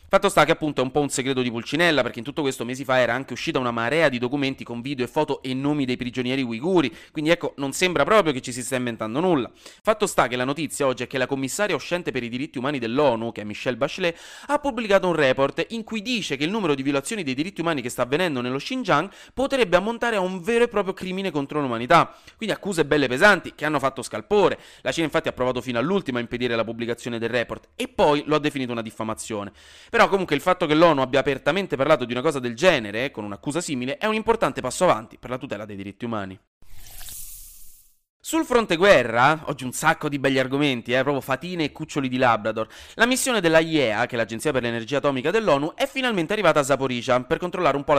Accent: native